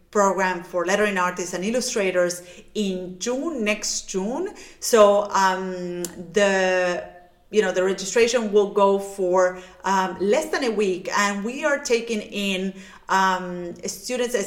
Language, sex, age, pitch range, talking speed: English, female, 30-49, 190-235 Hz, 135 wpm